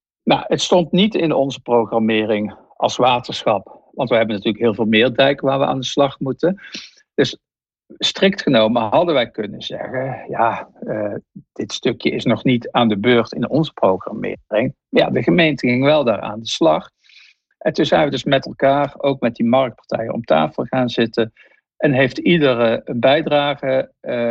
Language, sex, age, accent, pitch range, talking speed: English, male, 60-79, Dutch, 110-140 Hz, 175 wpm